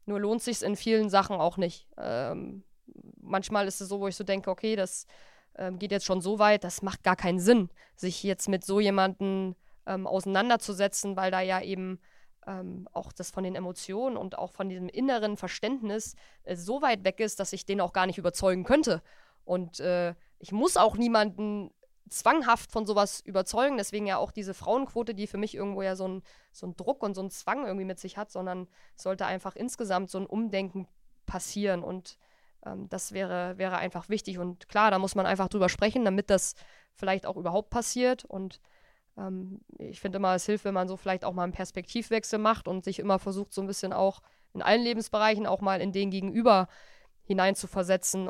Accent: German